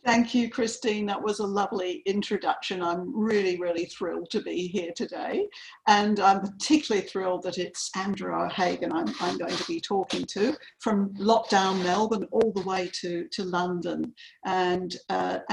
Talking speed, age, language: 160 wpm, 50-69, English